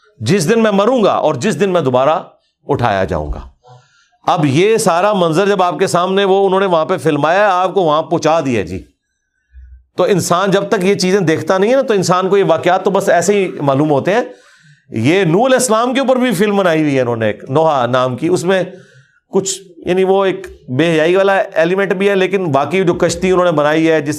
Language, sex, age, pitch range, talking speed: Urdu, male, 40-59, 135-185 Hz, 225 wpm